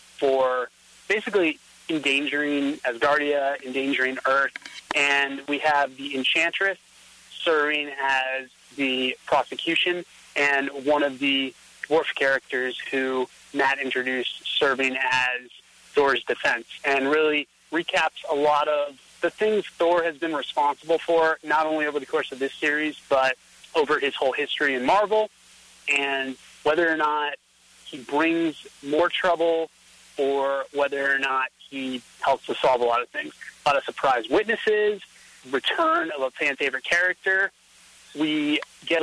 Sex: male